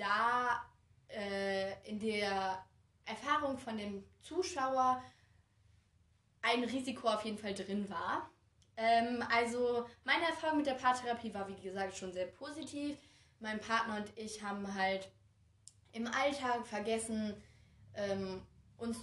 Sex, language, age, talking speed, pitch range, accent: female, German, 20-39, 125 wpm, 200-240 Hz, German